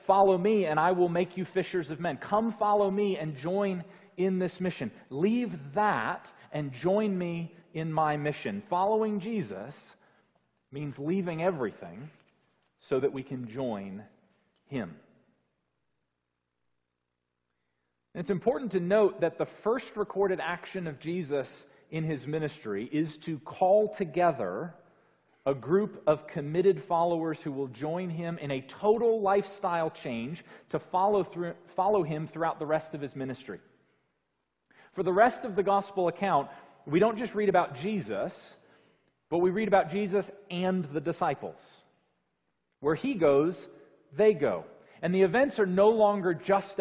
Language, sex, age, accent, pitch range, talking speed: English, male, 40-59, American, 150-195 Hz, 145 wpm